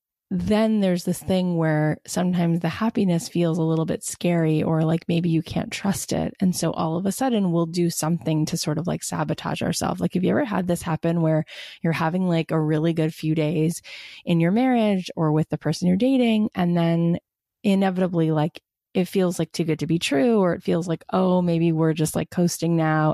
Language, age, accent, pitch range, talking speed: English, 20-39, American, 160-195 Hz, 215 wpm